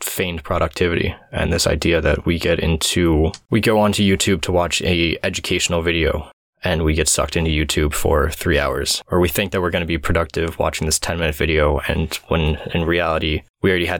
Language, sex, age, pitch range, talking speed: English, male, 20-39, 80-95 Hz, 205 wpm